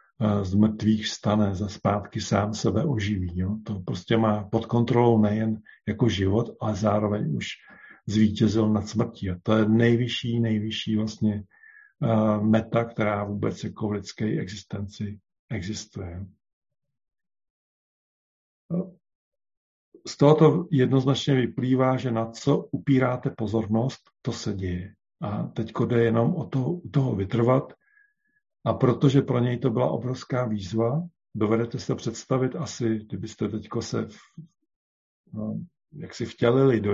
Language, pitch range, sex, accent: Czech, 105-130 Hz, male, native